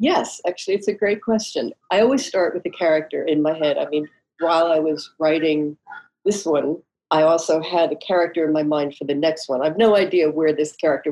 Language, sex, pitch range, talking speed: English, female, 150-175 Hz, 225 wpm